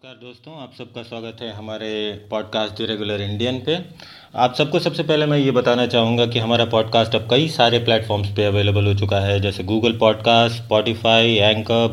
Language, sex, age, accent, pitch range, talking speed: Hindi, male, 30-49, native, 120-165 Hz, 175 wpm